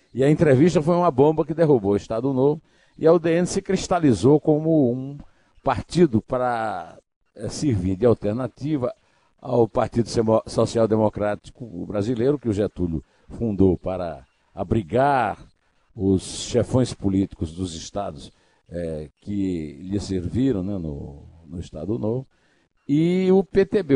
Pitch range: 90-125 Hz